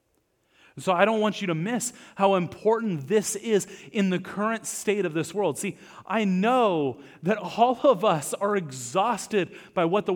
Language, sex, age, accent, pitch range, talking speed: English, male, 30-49, American, 145-190 Hz, 175 wpm